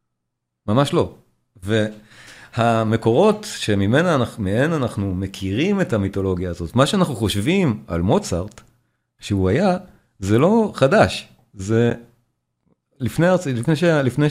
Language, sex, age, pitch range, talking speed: Hebrew, male, 40-59, 105-145 Hz, 95 wpm